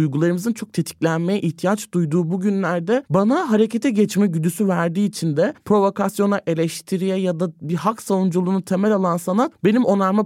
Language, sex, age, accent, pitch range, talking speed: Turkish, male, 30-49, native, 155-195 Hz, 145 wpm